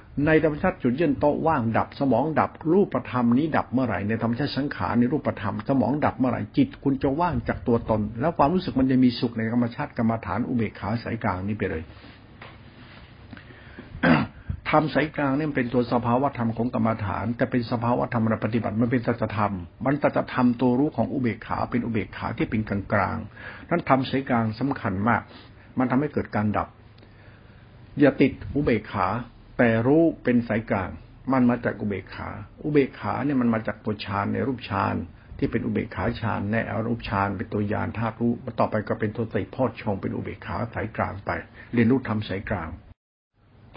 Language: Thai